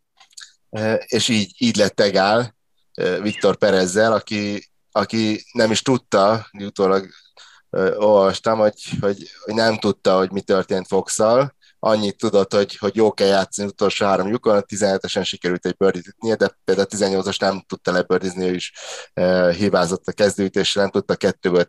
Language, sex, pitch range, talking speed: Hungarian, male, 95-110 Hz, 155 wpm